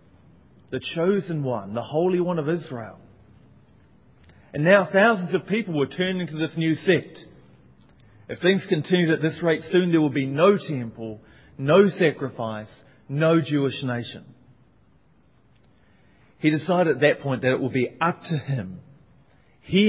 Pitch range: 125-160 Hz